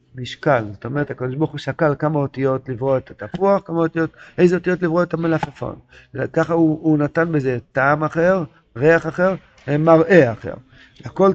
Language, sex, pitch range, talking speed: Hebrew, male, 130-165 Hz, 165 wpm